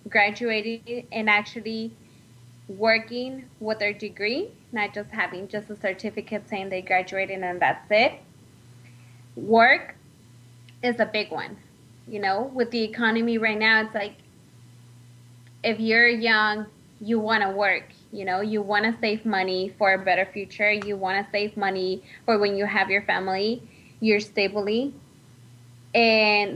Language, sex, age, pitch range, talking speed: English, female, 20-39, 190-225 Hz, 140 wpm